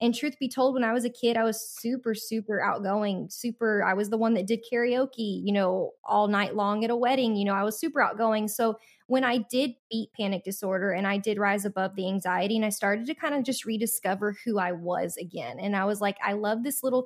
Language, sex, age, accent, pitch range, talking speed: English, female, 20-39, American, 205-255 Hz, 245 wpm